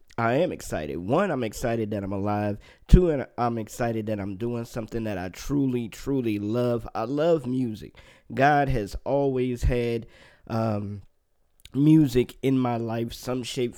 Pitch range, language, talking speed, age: 115-140 Hz, English, 155 wpm, 20-39